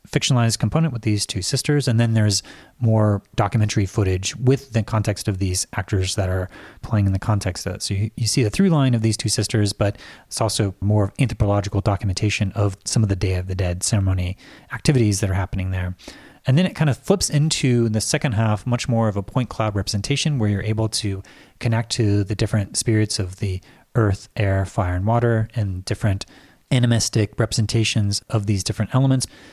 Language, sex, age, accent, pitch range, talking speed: English, male, 30-49, American, 100-120 Hz, 200 wpm